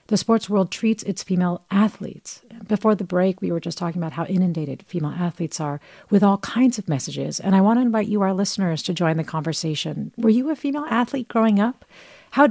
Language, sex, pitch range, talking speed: English, female, 165-205 Hz, 215 wpm